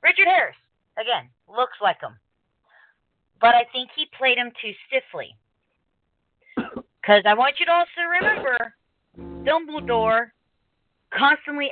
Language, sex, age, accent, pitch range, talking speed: English, female, 40-59, American, 190-285 Hz, 120 wpm